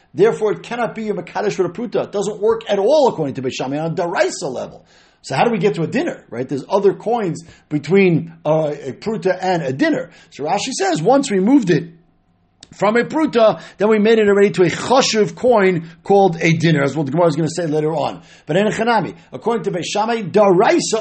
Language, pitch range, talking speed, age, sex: English, 150-205 Hz, 225 wpm, 50-69, male